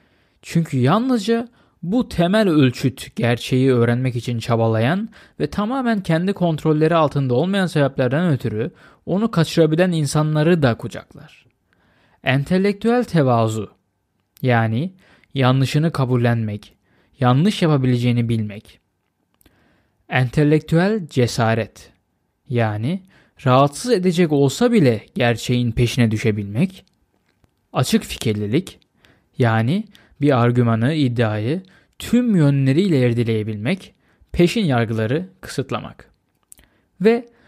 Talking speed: 85 wpm